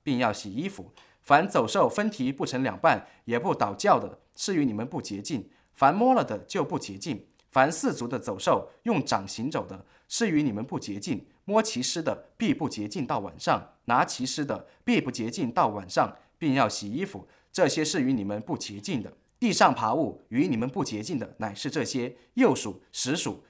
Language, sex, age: English, male, 20-39